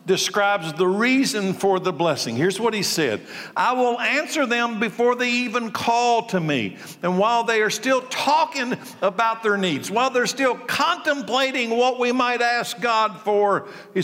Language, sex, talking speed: English, male, 170 wpm